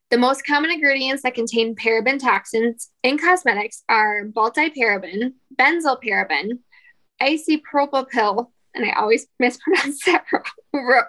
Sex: female